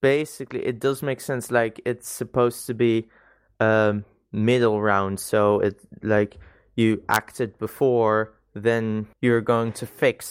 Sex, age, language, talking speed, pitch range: male, 20-39, English, 140 wpm, 105-115 Hz